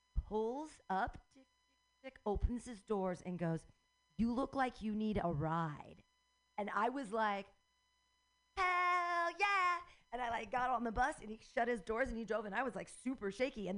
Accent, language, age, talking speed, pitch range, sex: American, English, 40-59, 195 wpm, 175-245 Hz, female